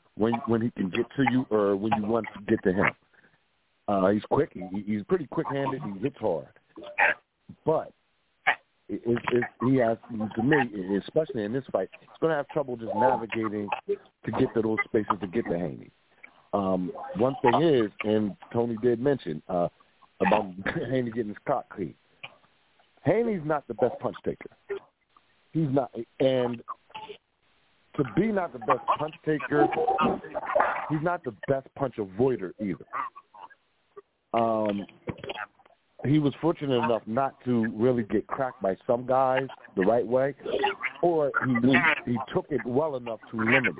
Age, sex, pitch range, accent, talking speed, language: 50-69, male, 110-145 Hz, American, 160 wpm, English